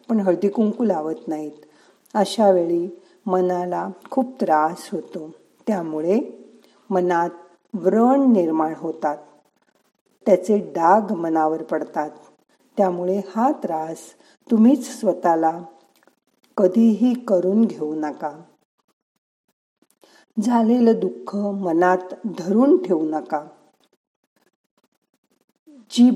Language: Marathi